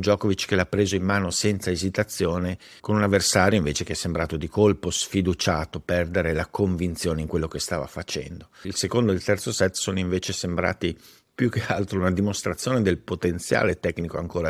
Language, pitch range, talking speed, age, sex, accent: Italian, 85-100 Hz, 180 wpm, 50-69, male, native